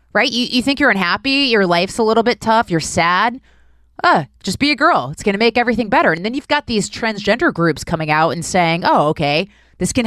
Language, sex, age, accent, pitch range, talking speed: English, female, 20-39, American, 160-250 Hz, 240 wpm